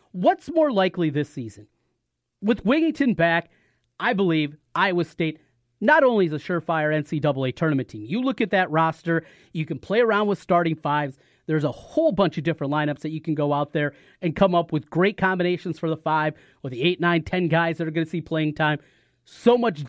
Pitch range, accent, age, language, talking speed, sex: 135-190 Hz, American, 30-49, English, 210 wpm, male